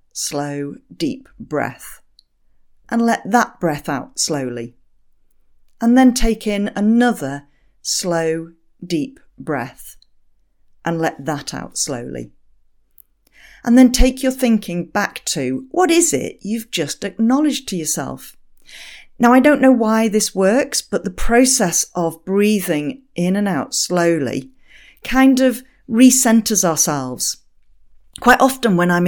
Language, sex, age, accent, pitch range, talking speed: English, female, 40-59, British, 160-240 Hz, 125 wpm